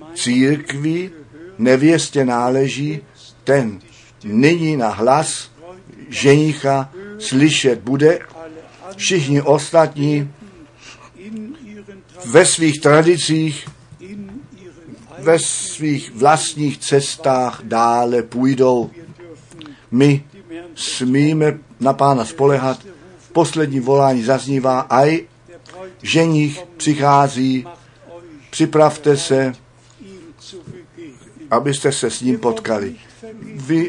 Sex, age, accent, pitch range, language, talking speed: male, 50-69, native, 130-165 Hz, Czech, 75 wpm